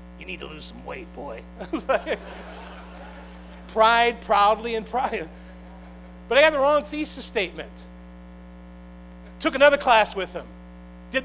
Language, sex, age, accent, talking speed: English, male, 40-59, American, 130 wpm